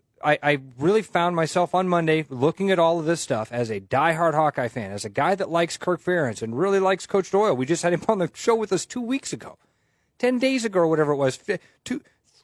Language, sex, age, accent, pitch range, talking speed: English, male, 30-49, American, 125-170 Hz, 240 wpm